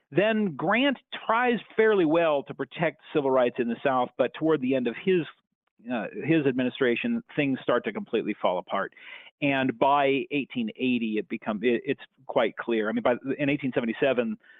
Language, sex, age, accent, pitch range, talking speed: English, male, 40-59, American, 120-165 Hz, 165 wpm